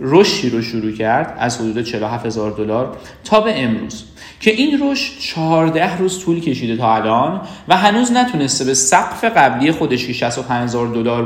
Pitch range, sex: 125-175 Hz, male